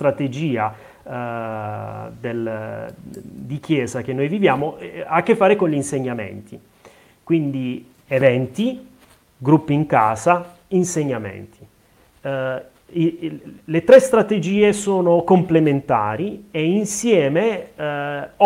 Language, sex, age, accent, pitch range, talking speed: Italian, male, 30-49, native, 120-160 Hz, 105 wpm